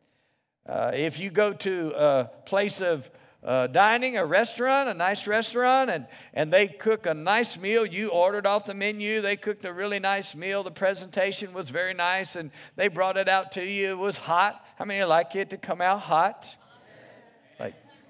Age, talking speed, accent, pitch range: 50-69, 195 wpm, American, 165-210 Hz